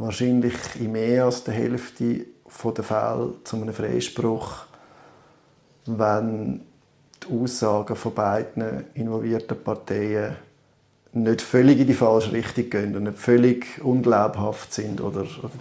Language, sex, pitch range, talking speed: German, male, 110-125 Hz, 120 wpm